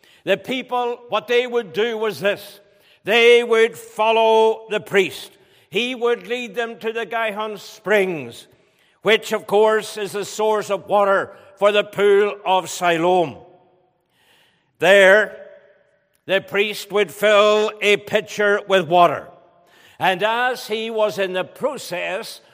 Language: English